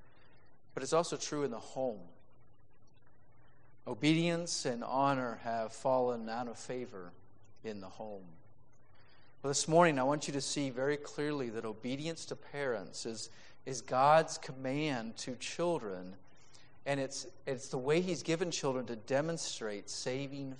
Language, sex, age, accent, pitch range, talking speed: English, male, 40-59, American, 115-145 Hz, 140 wpm